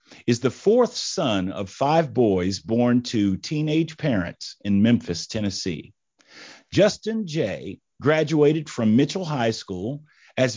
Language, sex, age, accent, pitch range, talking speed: English, male, 50-69, American, 110-170 Hz, 125 wpm